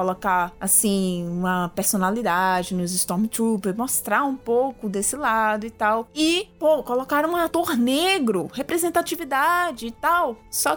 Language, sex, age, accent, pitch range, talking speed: Portuguese, female, 20-39, Brazilian, 205-295 Hz, 130 wpm